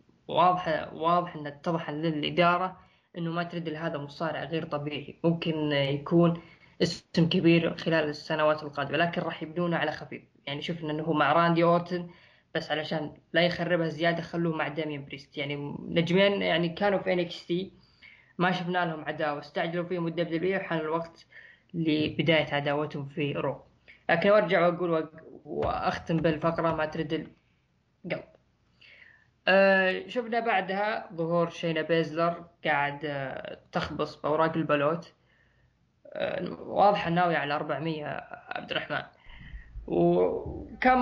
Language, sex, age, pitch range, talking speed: Arabic, female, 10-29, 155-180 Hz, 125 wpm